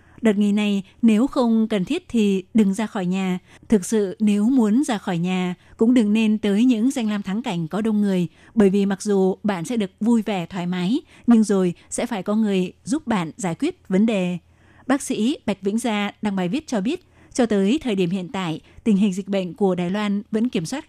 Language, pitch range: Vietnamese, 195-235 Hz